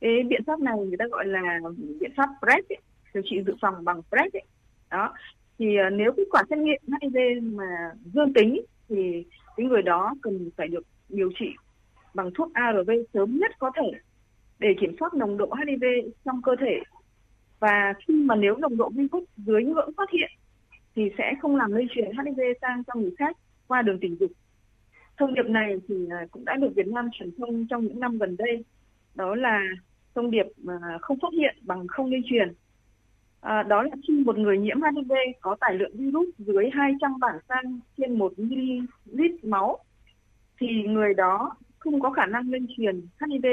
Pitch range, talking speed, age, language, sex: 200-280 Hz, 190 wpm, 20-39, Vietnamese, female